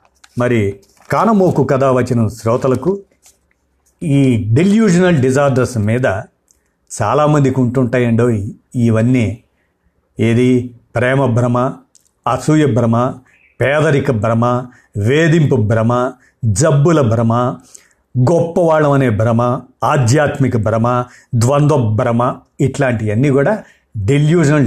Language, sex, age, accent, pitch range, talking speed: Telugu, male, 50-69, native, 115-140 Hz, 80 wpm